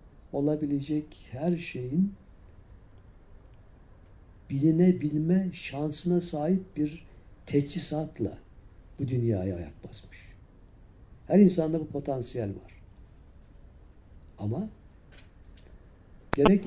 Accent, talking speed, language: native, 70 wpm, Turkish